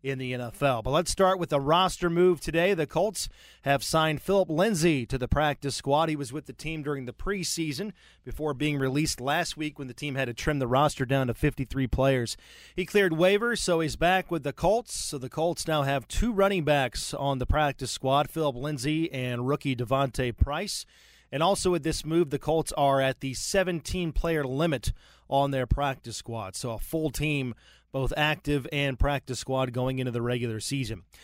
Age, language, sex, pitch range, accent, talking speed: 30-49, English, male, 135-170 Hz, American, 200 wpm